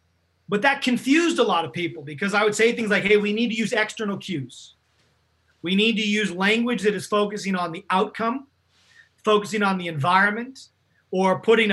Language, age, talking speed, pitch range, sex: English, 30-49, 190 wpm, 180-225 Hz, male